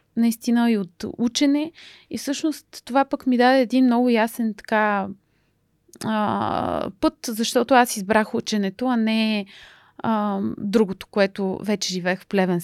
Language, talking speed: Bulgarian, 140 wpm